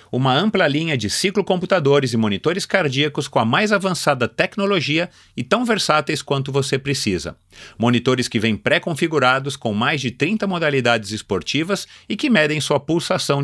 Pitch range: 120-170 Hz